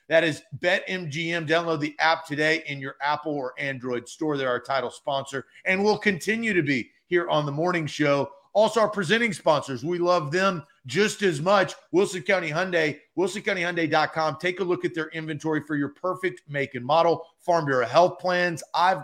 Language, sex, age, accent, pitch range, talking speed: English, male, 30-49, American, 150-190 Hz, 185 wpm